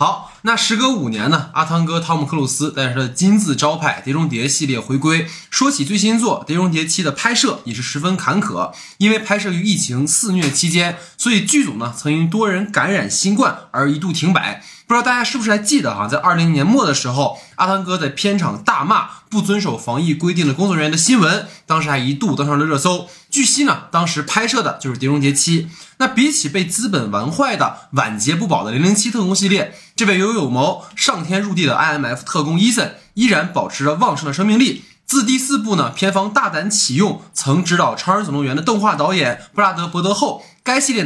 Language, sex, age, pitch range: Chinese, male, 20-39, 150-210 Hz